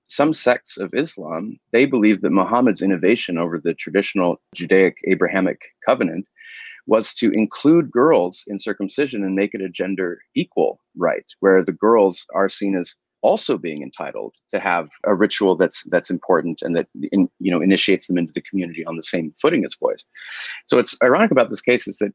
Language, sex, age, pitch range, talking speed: English, male, 30-49, 90-110 Hz, 185 wpm